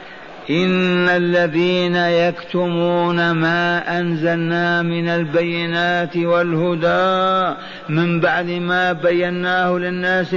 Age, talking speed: 50-69, 75 wpm